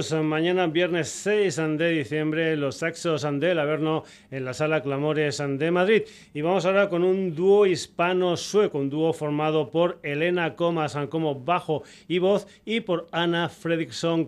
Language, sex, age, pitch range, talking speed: Spanish, male, 40-59, 145-175 Hz, 160 wpm